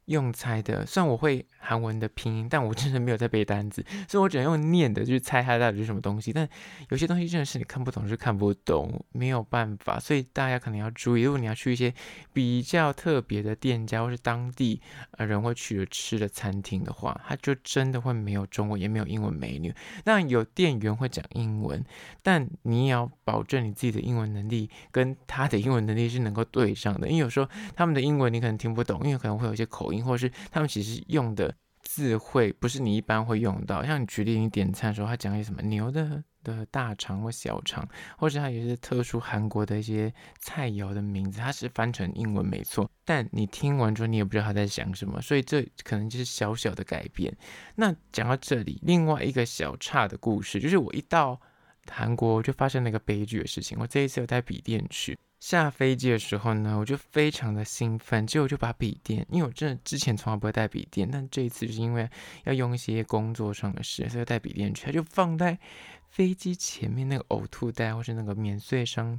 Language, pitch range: Chinese, 110-140 Hz